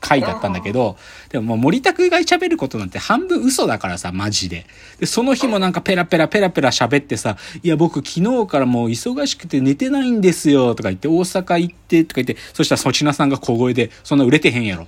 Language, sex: Japanese, male